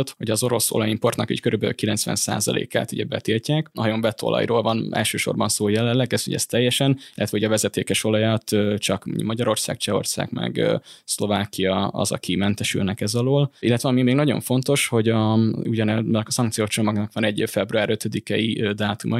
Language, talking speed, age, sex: Hungarian, 145 wpm, 20-39, male